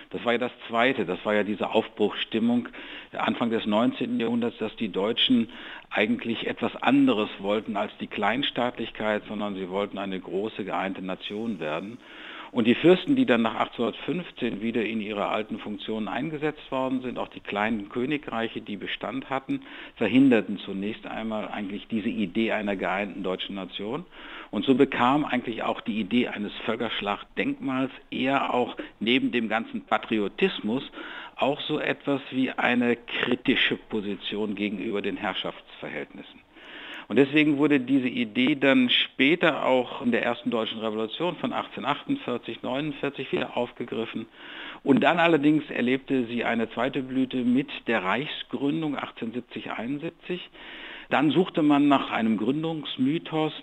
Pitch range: 115-155 Hz